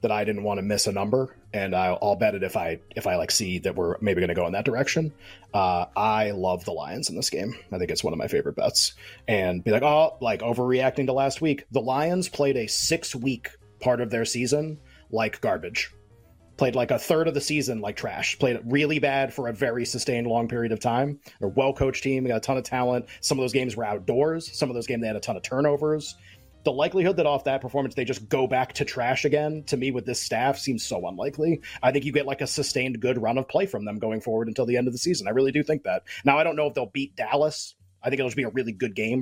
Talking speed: 270 wpm